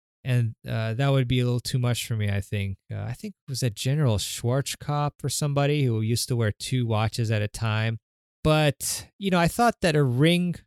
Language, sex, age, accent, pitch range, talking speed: English, male, 20-39, American, 110-140 Hz, 225 wpm